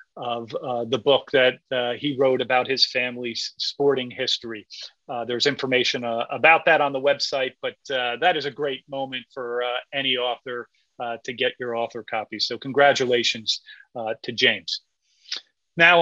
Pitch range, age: 120-150 Hz, 40-59